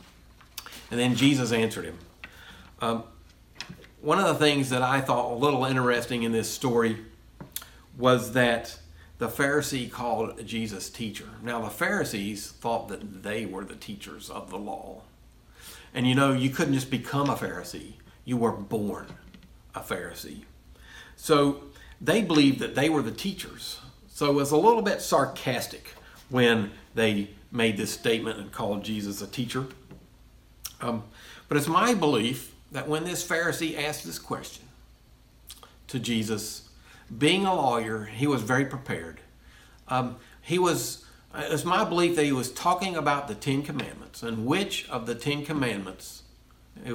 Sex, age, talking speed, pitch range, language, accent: male, 50-69, 150 wpm, 110-145 Hz, English, American